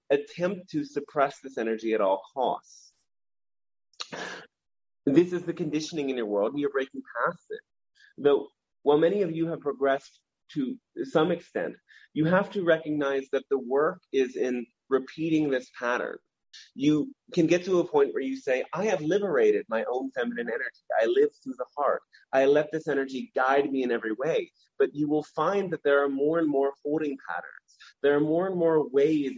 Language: English